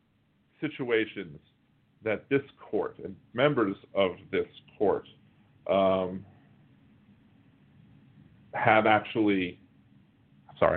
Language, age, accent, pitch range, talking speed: English, 40-59, American, 105-135 Hz, 70 wpm